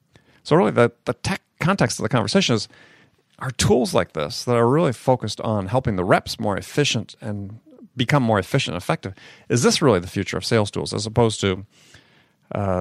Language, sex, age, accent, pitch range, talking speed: English, male, 40-59, American, 105-130 Hz, 195 wpm